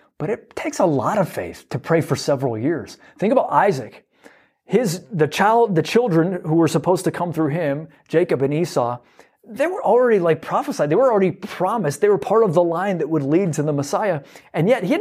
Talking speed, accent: 220 wpm, American